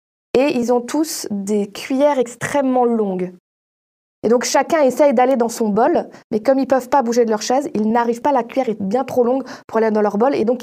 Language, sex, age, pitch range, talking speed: French, female, 20-39, 215-255 Hz, 235 wpm